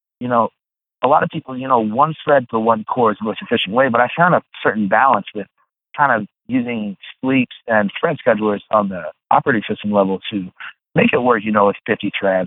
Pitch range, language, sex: 100-150 Hz, English, male